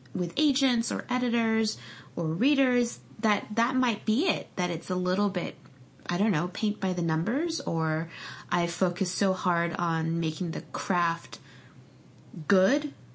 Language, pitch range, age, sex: English, 165-210 Hz, 20-39, female